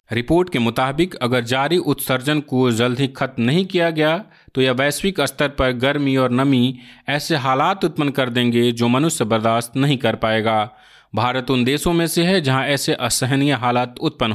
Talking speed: 175 wpm